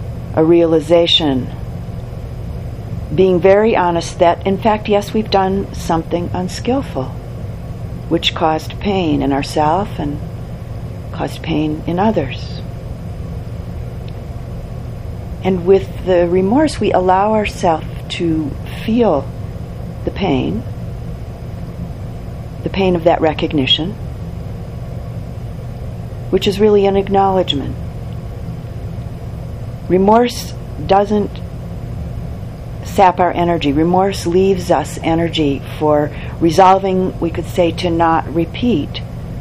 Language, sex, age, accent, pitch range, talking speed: English, female, 50-69, American, 135-180 Hz, 95 wpm